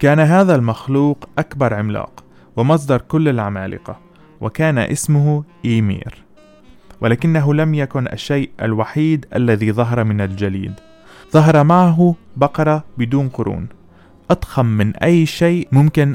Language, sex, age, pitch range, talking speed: Arabic, male, 20-39, 105-145 Hz, 110 wpm